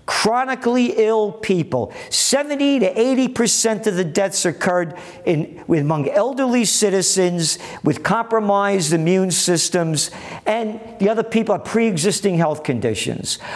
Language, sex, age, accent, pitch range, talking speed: English, male, 50-69, American, 165-250 Hz, 125 wpm